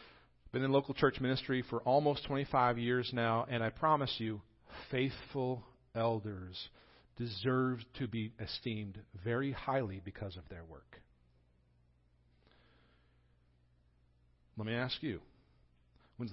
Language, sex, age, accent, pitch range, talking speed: English, male, 50-69, American, 100-145 Hz, 120 wpm